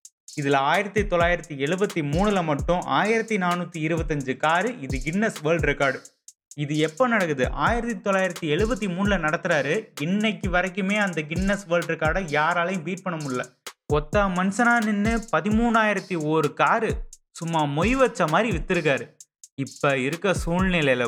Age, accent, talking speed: 30-49, native, 115 wpm